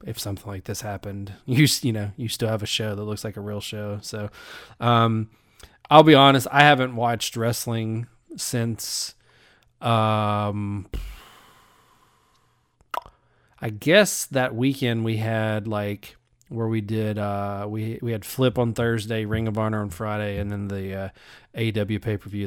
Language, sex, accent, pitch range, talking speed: English, male, American, 105-115 Hz, 155 wpm